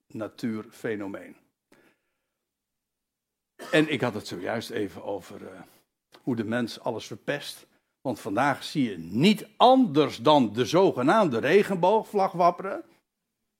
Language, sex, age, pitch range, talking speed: Dutch, male, 60-79, 130-195 Hz, 110 wpm